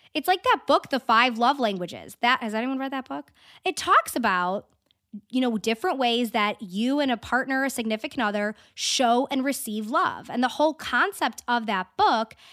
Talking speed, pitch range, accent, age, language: 190 wpm, 215-295 Hz, American, 20-39, English